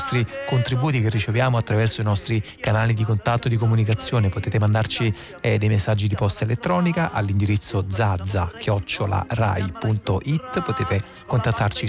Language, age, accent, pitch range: Italian, 30-49, native, 105-130 Hz